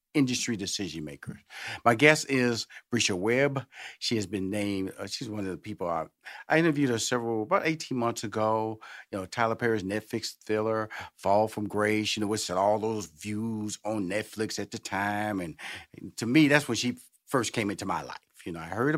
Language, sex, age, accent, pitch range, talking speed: English, male, 50-69, American, 105-125 Hz, 200 wpm